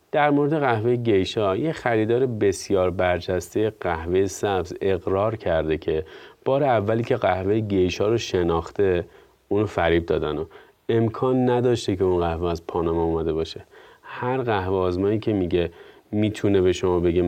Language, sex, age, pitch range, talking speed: Persian, male, 30-49, 85-115 Hz, 140 wpm